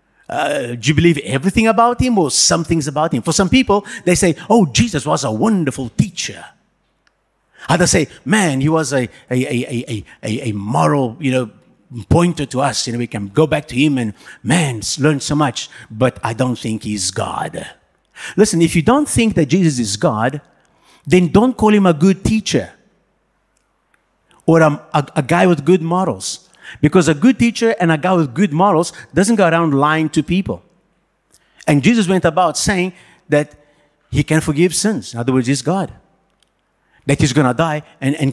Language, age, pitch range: English, 50-69, 135-185 Hz